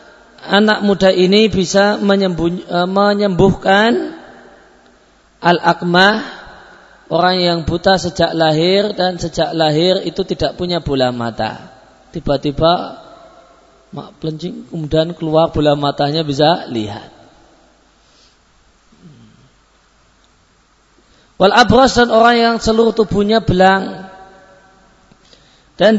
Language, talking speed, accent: Indonesian, 80 wpm, native